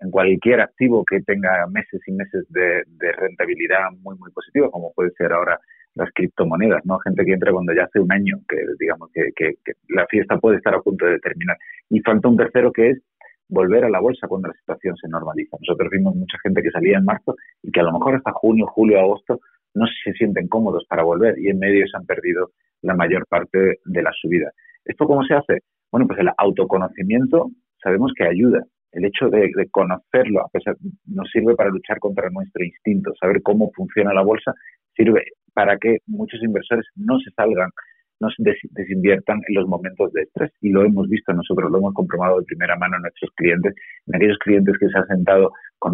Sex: male